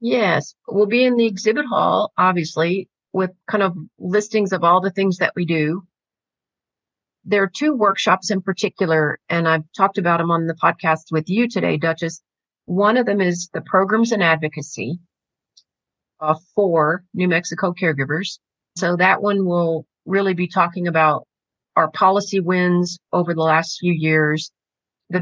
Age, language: 40-59, English